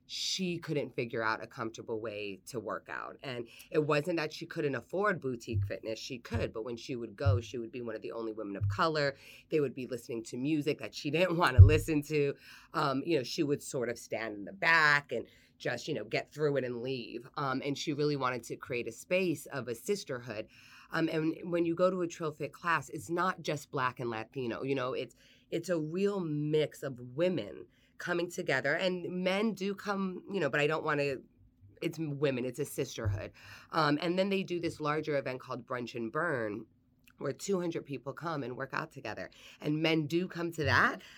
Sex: female